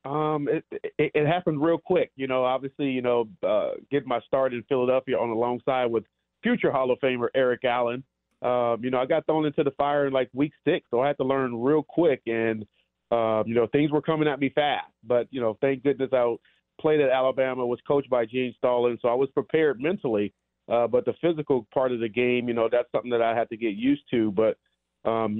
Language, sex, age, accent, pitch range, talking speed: English, male, 40-59, American, 115-145 Hz, 235 wpm